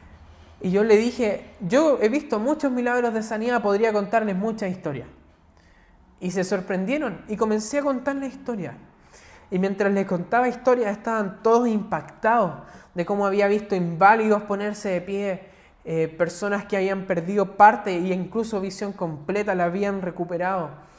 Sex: male